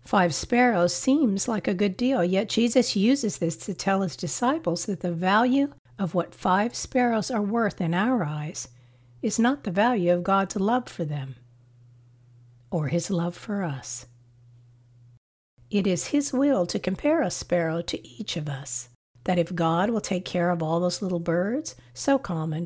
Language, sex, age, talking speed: English, female, 60-79, 175 wpm